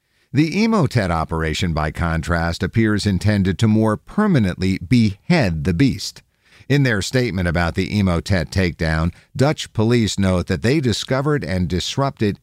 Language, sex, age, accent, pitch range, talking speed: English, male, 50-69, American, 90-130 Hz, 135 wpm